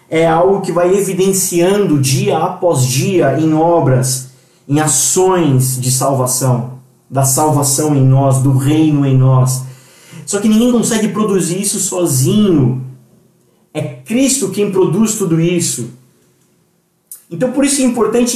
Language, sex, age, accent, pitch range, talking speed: Portuguese, male, 20-39, Brazilian, 160-200 Hz, 130 wpm